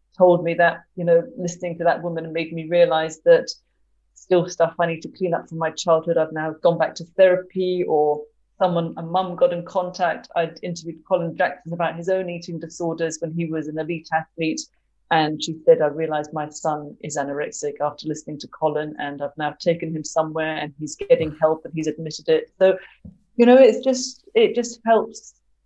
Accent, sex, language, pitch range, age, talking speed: British, female, English, 160-185 Hz, 30-49, 205 wpm